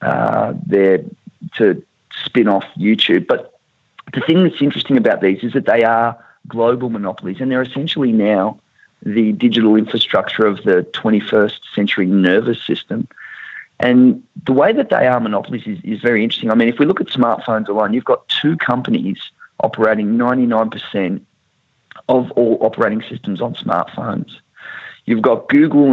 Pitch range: 105-130 Hz